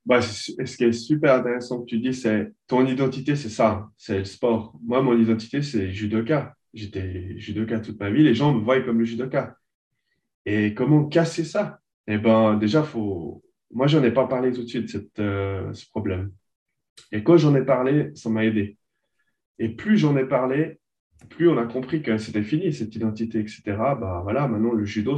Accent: French